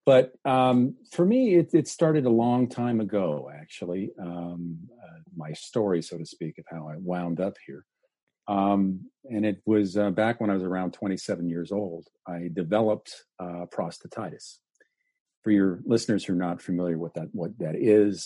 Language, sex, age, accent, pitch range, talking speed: English, male, 50-69, American, 90-120 Hz, 175 wpm